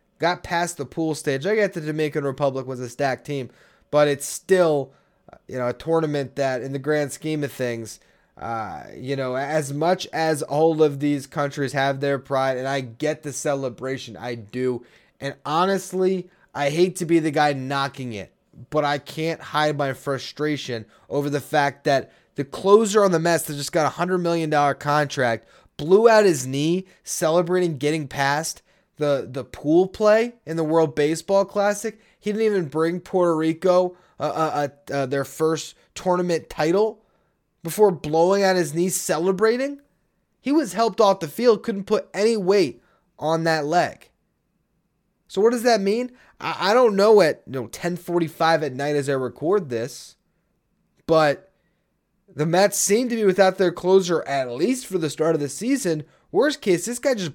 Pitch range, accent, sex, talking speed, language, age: 140-190 Hz, American, male, 175 wpm, English, 20-39